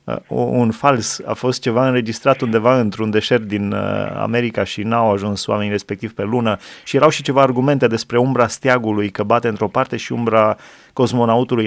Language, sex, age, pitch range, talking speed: Romanian, male, 30-49, 105-125 Hz, 170 wpm